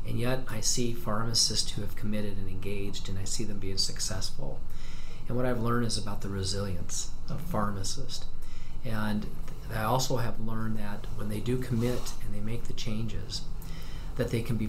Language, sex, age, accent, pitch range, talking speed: English, male, 40-59, American, 105-125 Hz, 185 wpm